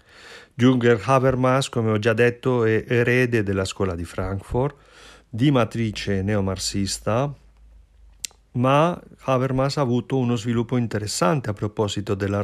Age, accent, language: 40-59, native, Italian